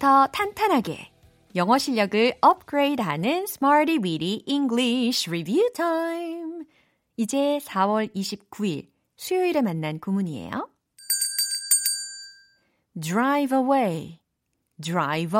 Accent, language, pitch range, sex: native, Korean, 175-295 Hz, female